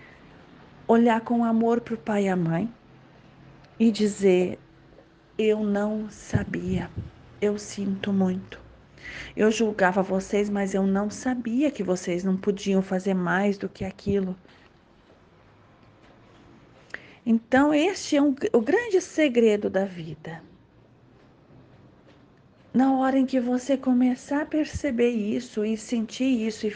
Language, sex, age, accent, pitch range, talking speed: Portuguese, female, 40-59, Brazilian, 190-245 Hz, 120 wpm